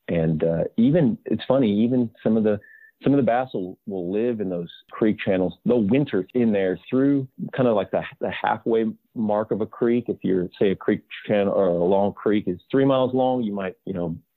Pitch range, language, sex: 95-115 Hz, English, male